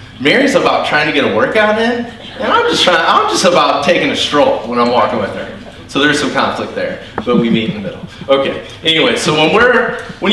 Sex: male